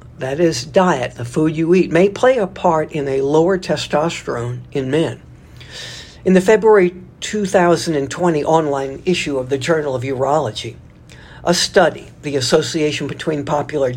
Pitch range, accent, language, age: 140-175 Hz, American, English, 60-79